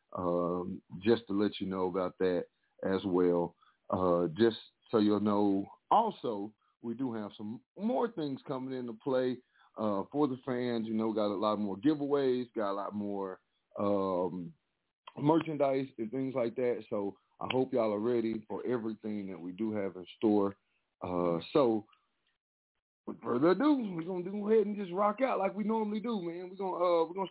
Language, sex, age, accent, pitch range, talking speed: English, male, 40-59, American, 100-135 Hz, 185 wpm